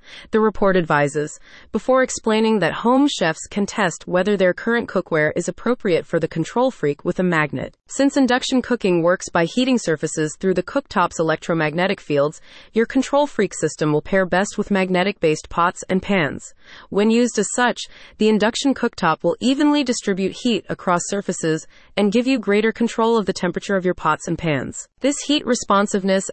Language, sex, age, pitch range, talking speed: English, female, 30-49, 175-230 Hz, 175 wpm